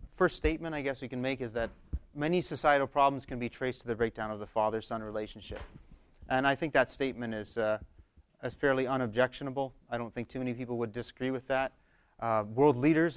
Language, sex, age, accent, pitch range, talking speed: English, male, 30-49, American, 110-140 Hz, 205 wpm